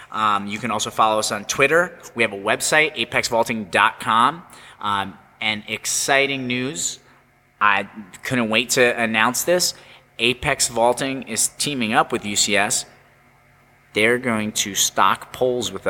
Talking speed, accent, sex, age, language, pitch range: 130 wpm, American, male, 20-39, English, 110-135 Hz